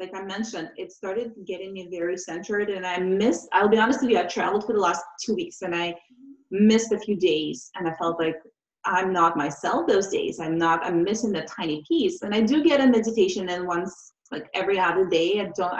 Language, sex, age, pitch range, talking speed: English, female, 30-49, 180-235 Hz, 230 wpm